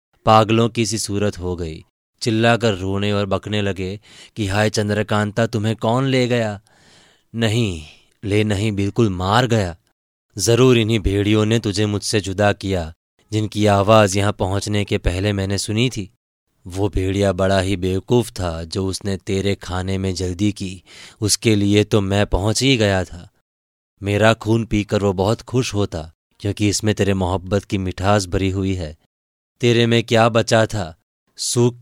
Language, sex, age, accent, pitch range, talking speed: Hindi, male, 20-39, native, 95-110 Hz, 160 wpm